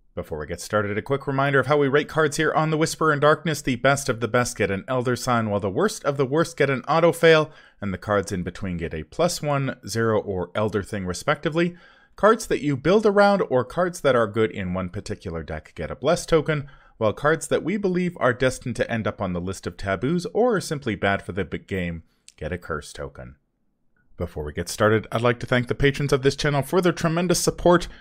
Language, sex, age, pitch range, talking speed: English, male, 30-49, 95-155 Hz, 240 wpm